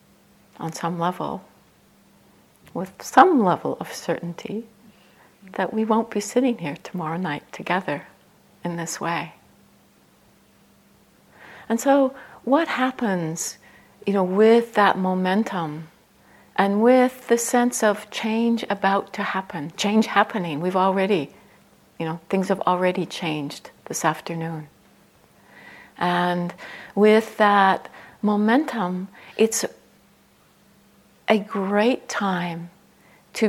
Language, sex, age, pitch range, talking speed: English, female, 60-79, 180-215 Hz, 105 wpm